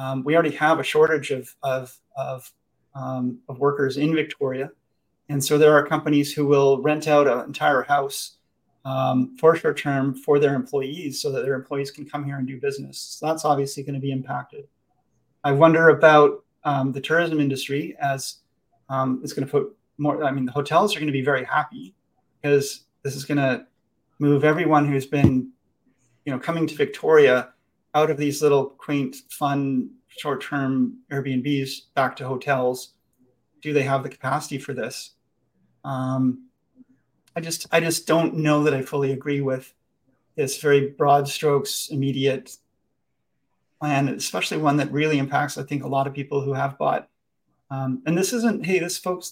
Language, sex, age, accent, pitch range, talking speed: English, male, 30-49, American, 135-150 Hz, 170 wpm